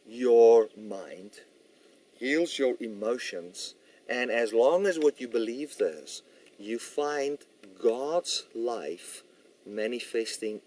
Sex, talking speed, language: male, 100 wpm, English